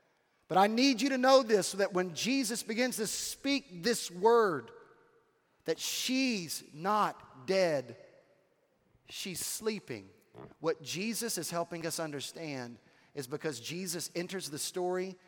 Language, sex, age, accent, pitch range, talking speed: English, male, 30-49, American, 155-205 Hz, 135 wpm